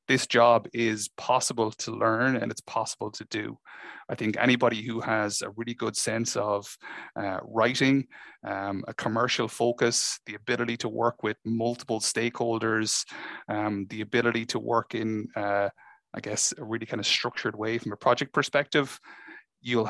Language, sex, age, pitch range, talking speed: English, male, 30-49, 110-120 Hz, 165 wpm